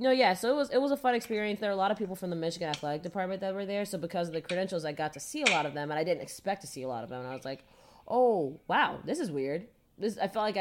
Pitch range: 150-205 Hz